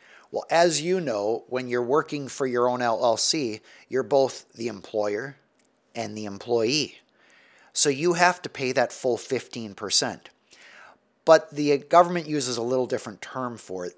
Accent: American